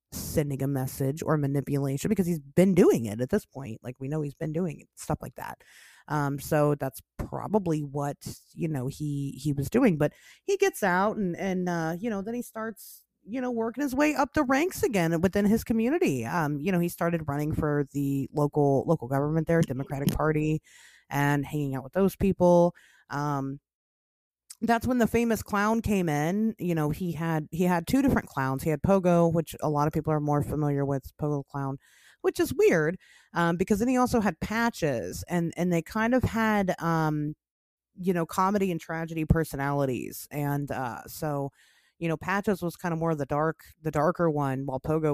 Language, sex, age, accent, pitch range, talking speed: English, female, 30-49, American, 145-190 Hz, 200 wpm